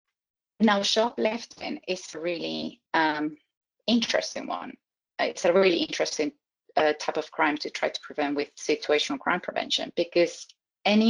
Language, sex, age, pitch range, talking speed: English, female, 30-49, 165-225 Hz, 140 wpm